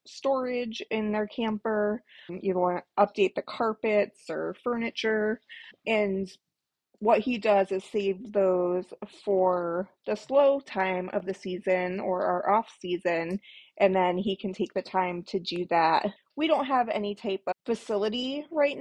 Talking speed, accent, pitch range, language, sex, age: 155 wpm, American, 185-230 Hz, English, female, 20-39